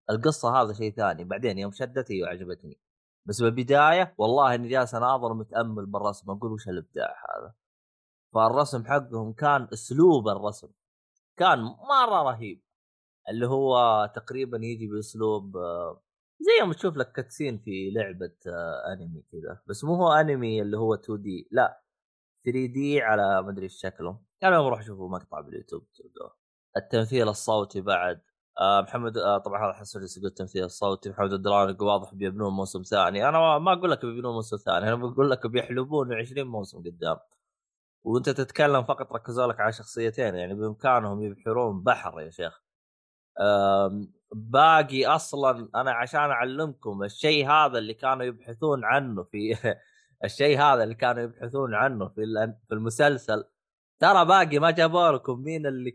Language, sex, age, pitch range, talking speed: Arabic, male, 20-39, 100-135 Hz, 145 wpm